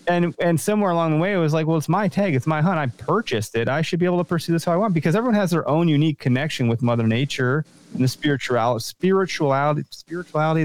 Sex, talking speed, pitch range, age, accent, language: male, 250 wpm, 115-165 Hz, 30-49, American, English